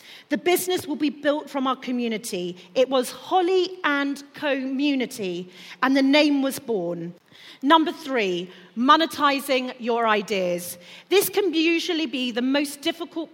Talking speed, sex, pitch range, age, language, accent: 135 wpm, female, 230-330 Hz, 40-59, English, British